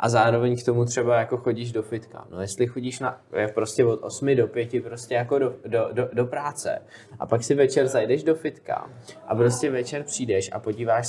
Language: Czech